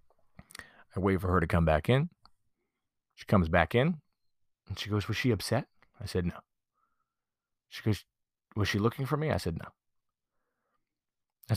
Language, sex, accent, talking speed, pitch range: English, male, American, 165 wpm, 85-115 Hz